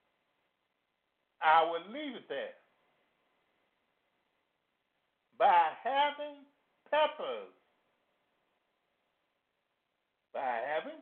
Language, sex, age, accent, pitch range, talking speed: English, male, 50-69, American, 195-295 Hz, 55 wpm